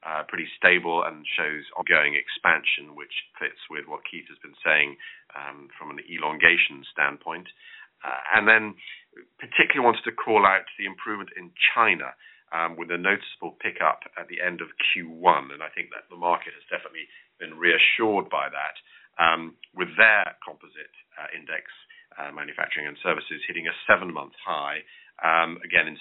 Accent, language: British, English